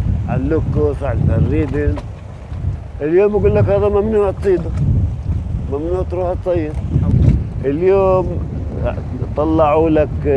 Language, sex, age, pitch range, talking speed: Arabic, male, 50-69, 100-155 Hz, 95 wpm